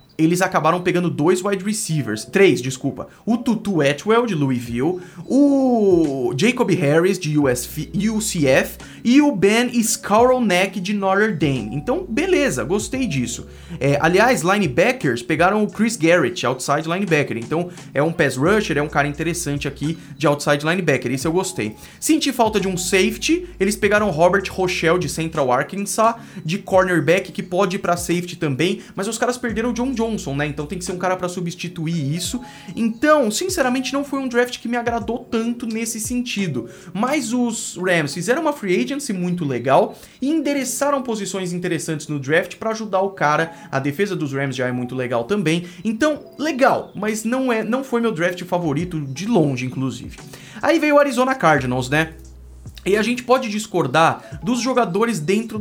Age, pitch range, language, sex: 20-39, 155-225 Hz, Portuguese, male